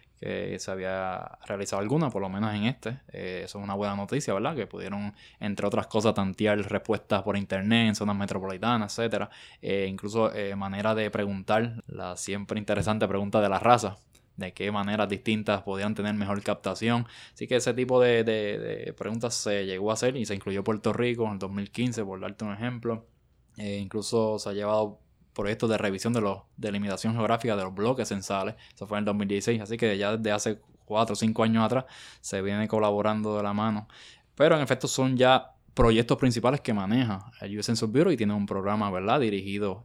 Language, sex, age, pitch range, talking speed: Spanish, male, 10-29, 100-115 Hz, 200 wpm